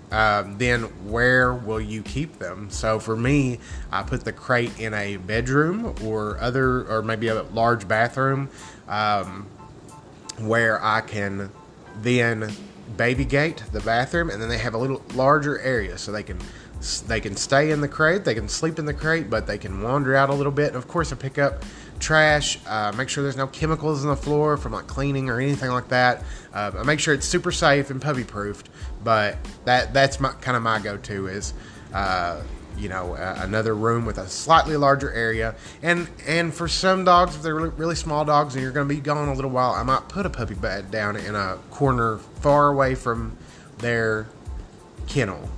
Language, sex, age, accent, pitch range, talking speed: English, male, 20-39, American, 110-140 Hz, 195 wpm